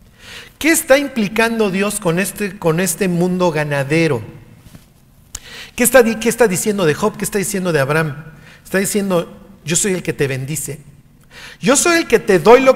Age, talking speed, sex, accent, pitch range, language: 50-69, 165 wpm, male, Mexican, 160-215 Hz, Spanish